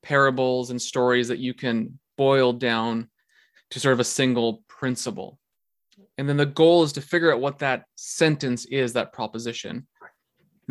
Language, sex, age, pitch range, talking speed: English, male, 20-39, 120-140 Hz, 165 wpm